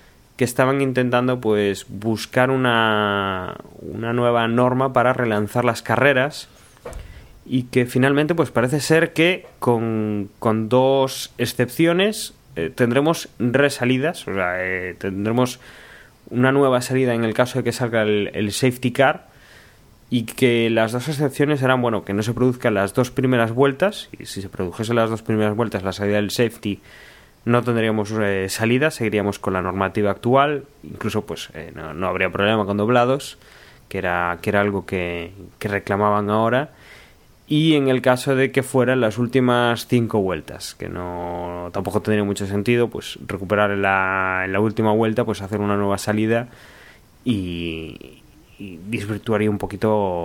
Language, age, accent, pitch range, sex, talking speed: Spanish, 20-39, Spanish, 100-125 Hz, male, 160 wpm